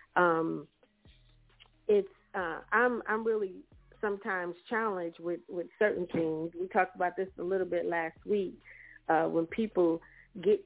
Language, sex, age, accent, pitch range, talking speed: English, female, 40-59, American, 170-205 Hz, 140 wpm